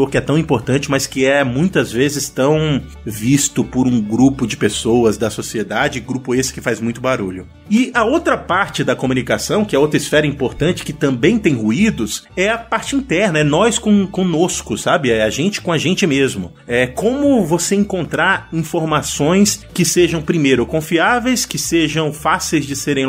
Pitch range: 130-190 Hz